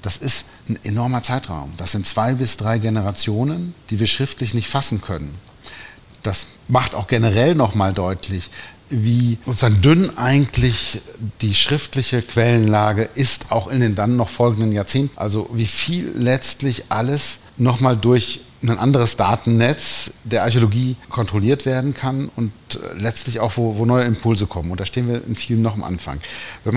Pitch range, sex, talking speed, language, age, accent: 105-125 Hz, male, 160 wpm, German, 50-69, German